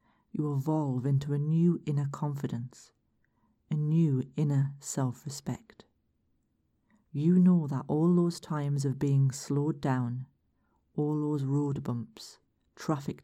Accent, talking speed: British, 120 wpm